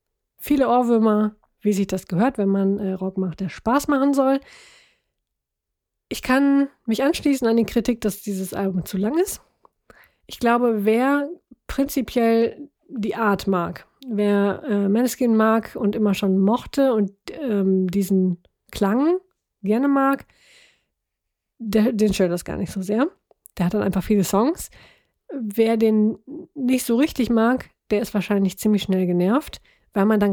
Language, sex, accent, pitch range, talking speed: German, female, German, 195-240 Hz, 150 wpm